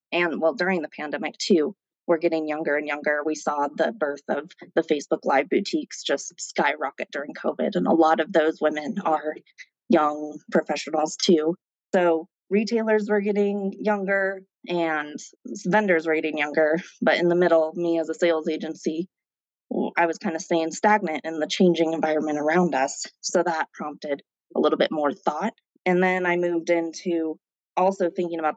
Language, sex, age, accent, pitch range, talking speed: English, female, 20-39, American, 155-185 Hz, 170 wpm